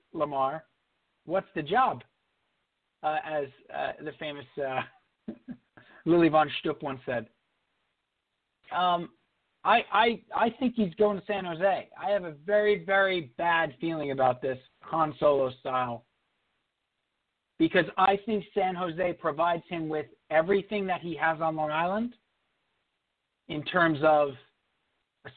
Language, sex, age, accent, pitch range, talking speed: English, male, 40-59, American, 155-205 Hz, 130 wpm